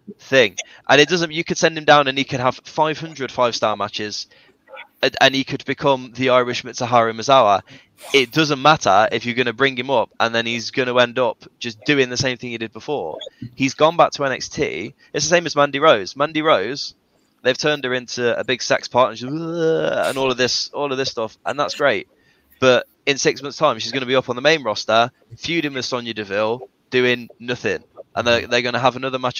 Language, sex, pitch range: English, male, 115-140 Hz